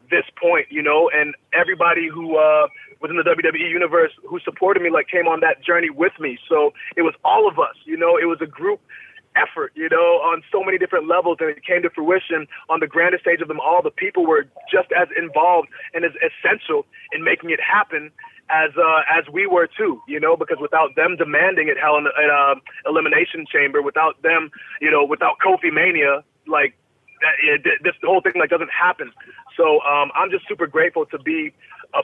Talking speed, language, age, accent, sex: 210 wpm, English, 20-39, American, male